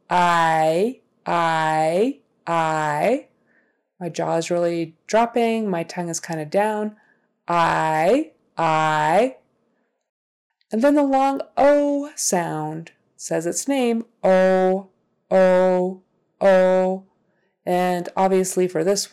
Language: English